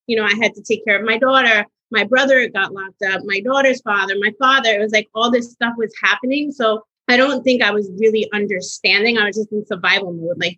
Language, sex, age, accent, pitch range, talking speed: English, female, 30-49, American, 205-240 Hz, 245 wpm